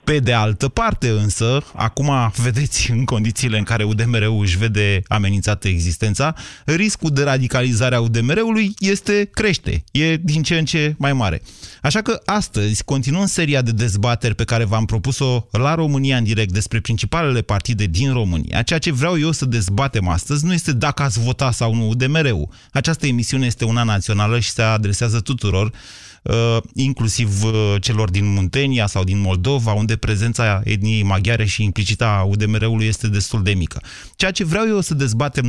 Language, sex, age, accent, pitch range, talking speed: Romanian, male, 30-49, native, 105-135 Hz, 165 wpm